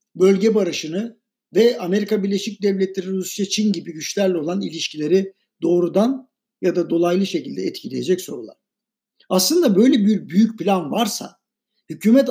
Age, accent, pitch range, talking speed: 60-79, native, 175-225 Hz, 125 wpm